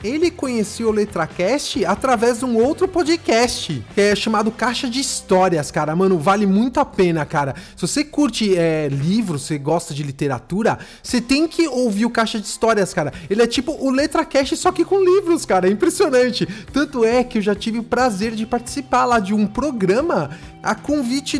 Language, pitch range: English, 190-250 Hz